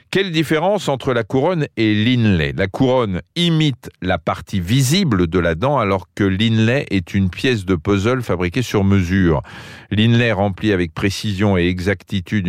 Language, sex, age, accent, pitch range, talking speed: French, male, 40-59, French, 90-115 Hz, 160 wpm